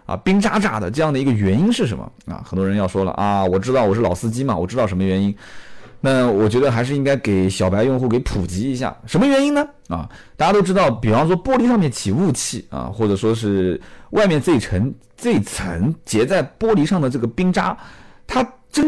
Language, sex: Chinese, male